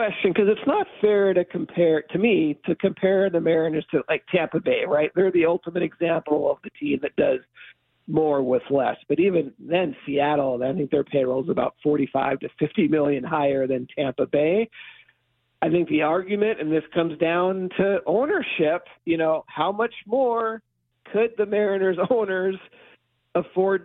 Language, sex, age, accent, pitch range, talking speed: English, male, 50-69, American, 155-205 Hz, 170 wpm